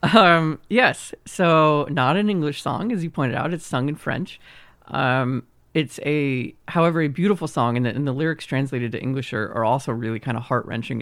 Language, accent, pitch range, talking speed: English, American, 120-150 Hz, 200 wpm